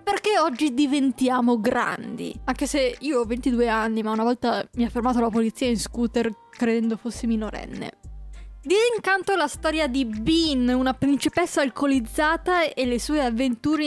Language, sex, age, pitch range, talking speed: Italian, female, 10-29, 240-295 Hz, 155 wpm